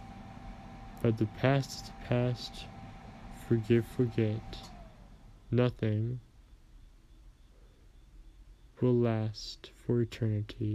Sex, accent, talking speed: male, American, 65 wpm